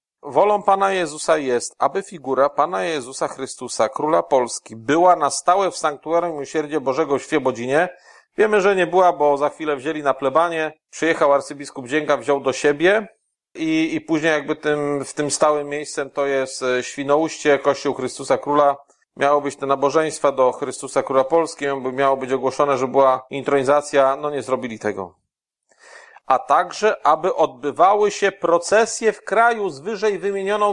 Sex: male